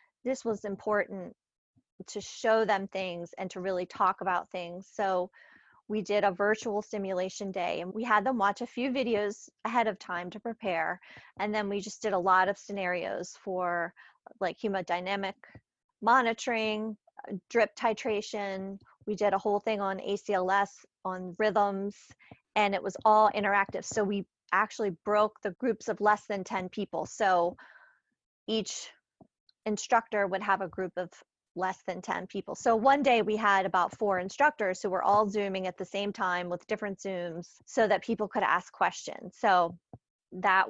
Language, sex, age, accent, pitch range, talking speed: English, female, 30-49, American, 185-215 Hz, 165 wpm